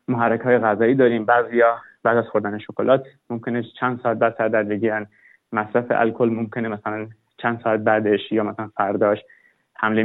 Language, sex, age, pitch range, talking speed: Persian, male, 30-49, 110-130 Hz, 160 wpm